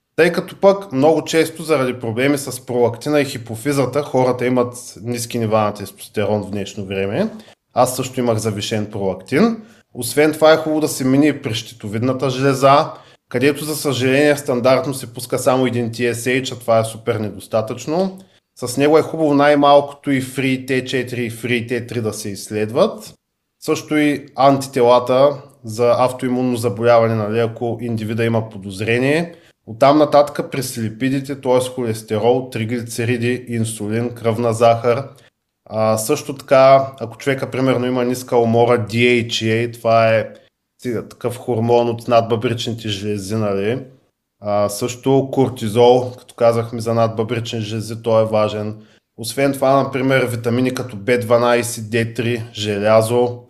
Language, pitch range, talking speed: Bulgarian, 115-135 Hz, 140 wpm